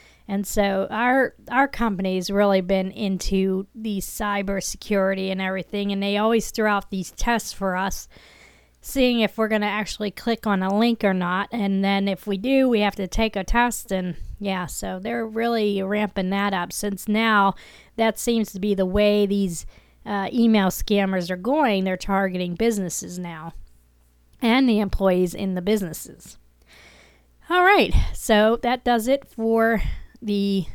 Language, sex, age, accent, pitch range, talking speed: English, female, 40-59, American, 190-235 Hz, 165 wpm